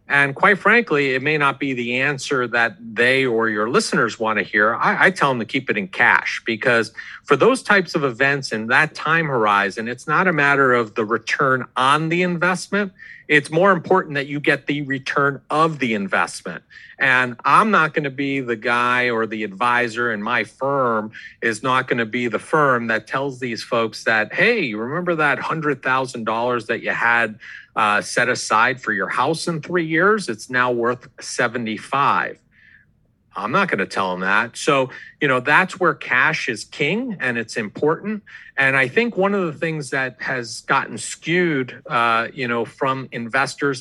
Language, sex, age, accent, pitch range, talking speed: English, male, 40-59, American, 120-160 Hz, 185 wpm